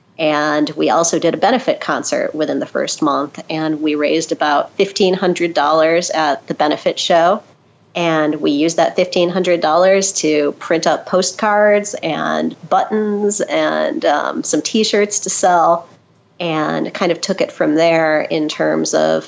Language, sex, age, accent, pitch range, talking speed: English, female, 40-59, American, 155-180 Hz, 145 wpm